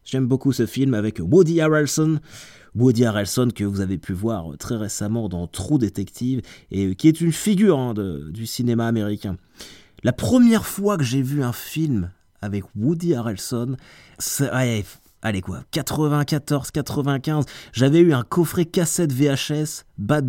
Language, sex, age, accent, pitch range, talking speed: French, male, 30-49, French, 105-145 Hz, 155 wpm